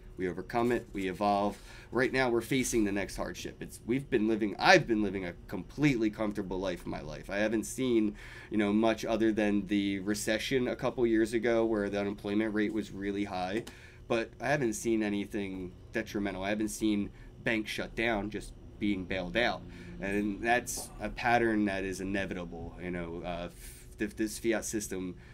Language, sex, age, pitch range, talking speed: English, male, 20-39, 100-115 Hz, 180 wpm